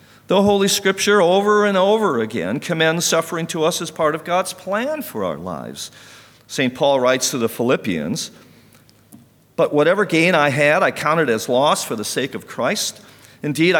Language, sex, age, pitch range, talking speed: English, male, 50-69, 115-165 Hz, 175 wpm